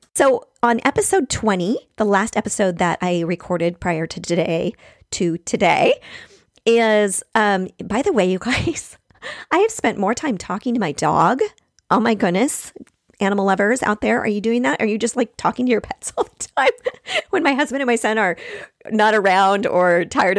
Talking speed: 190 wpm